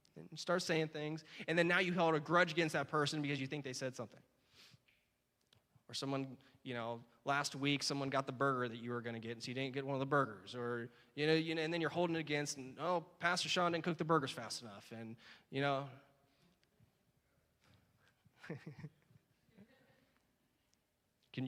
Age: 20-39